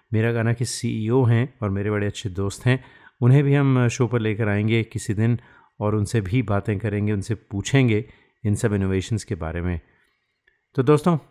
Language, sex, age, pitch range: Hindi, male, 30-49, 100-125 Hz